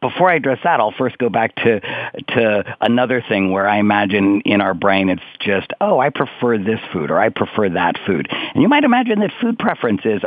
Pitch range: 105-140 Hz